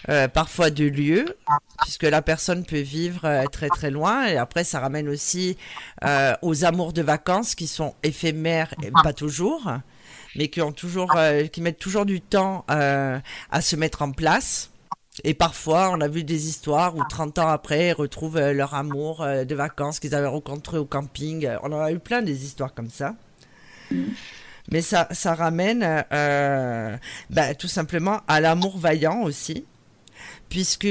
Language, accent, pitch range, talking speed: French, French, 145-170 Hz, 175 wpm